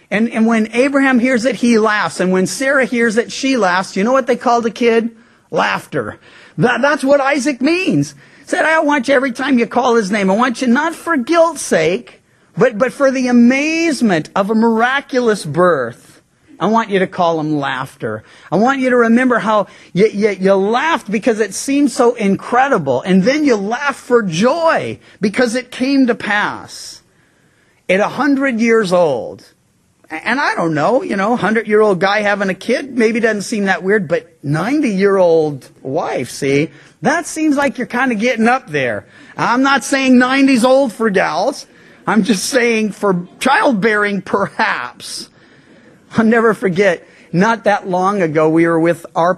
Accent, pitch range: American, 190-260 Hz